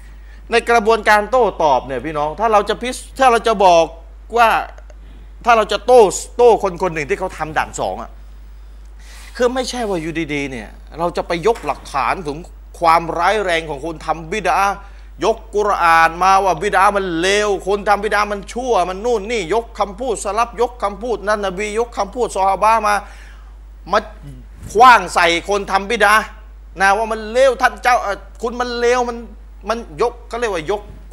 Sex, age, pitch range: male, 30-49, 155-225 Hz